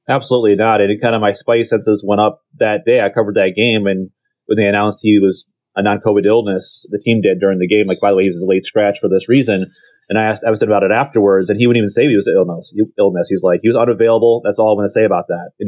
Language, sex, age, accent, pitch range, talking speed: English, male, 30-49, American, 100-120 Hz, 295 wpm